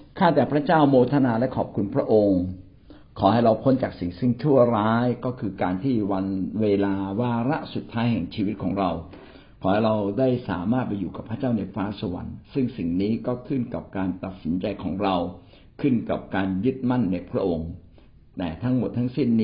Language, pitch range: Thai, 95-120 Hz